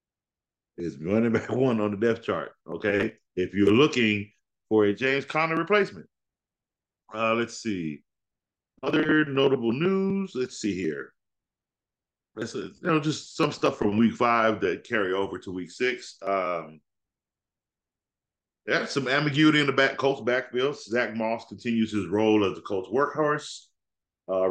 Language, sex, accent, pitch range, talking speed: English, male, American, 105-155 Hz, 150 wpm